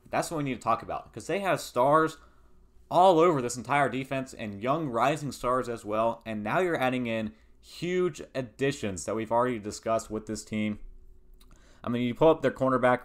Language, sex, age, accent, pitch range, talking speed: English, male, 20-39, American, 105-125 Hz, 200 wpm